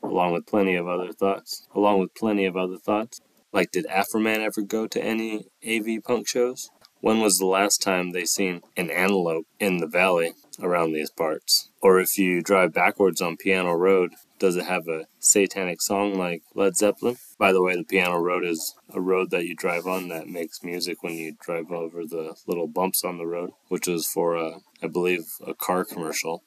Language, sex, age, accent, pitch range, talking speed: English, male, 20-39, American, 85-100 Hz, 200 wpm